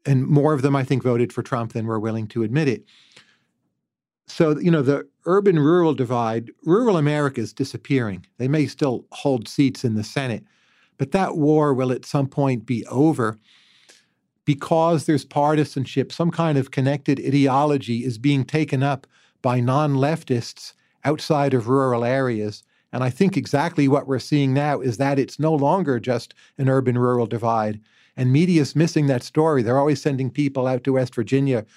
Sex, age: male, 40-59